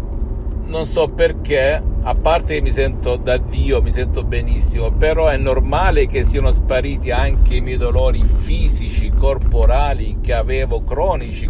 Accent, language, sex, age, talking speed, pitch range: native, Italian, male, 50-69, 145 wpm, 70-100 Hz